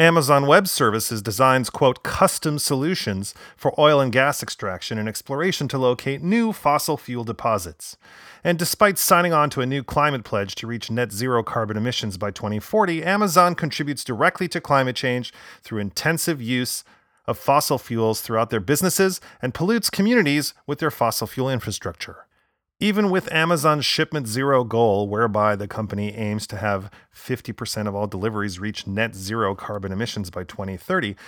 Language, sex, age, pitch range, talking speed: English, male, 30-49, 110-155 Hz, 160 wpm